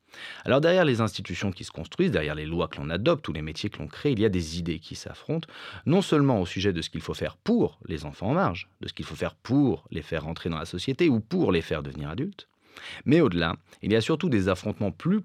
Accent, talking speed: French, 265 wpm